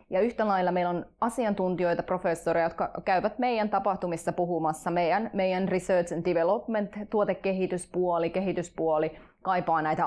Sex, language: female, Finnish